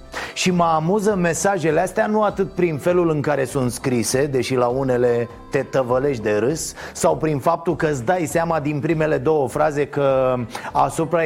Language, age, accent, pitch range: Romanian, 30-49, native, 160-215 Hz